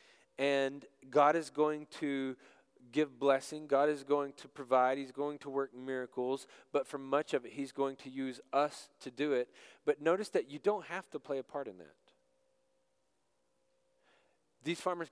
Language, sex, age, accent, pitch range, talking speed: English, male, 40-59, American, 135-175 Hz, 175 wpm